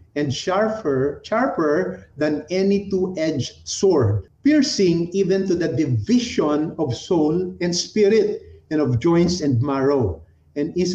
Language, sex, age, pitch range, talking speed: Filipino, male, 50-69, 130-185 Hz, 125 wpm